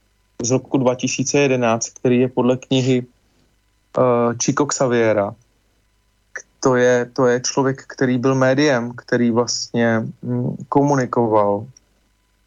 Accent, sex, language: native, male, Czech